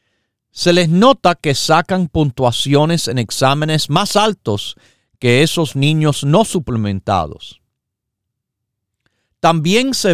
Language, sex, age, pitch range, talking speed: Spanish, male, 50-69, 115-170 Hz, 100 wpm